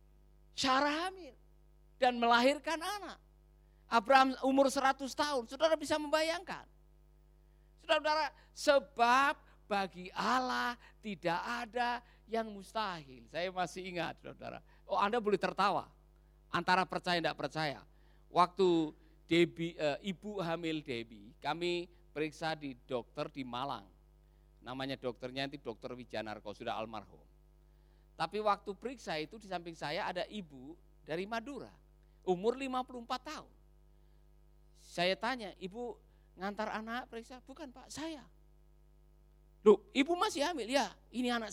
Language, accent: Indonesian, native